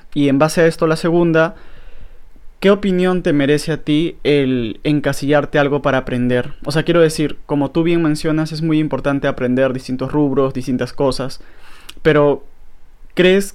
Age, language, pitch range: 20-39, Spanish, 135-155 Hz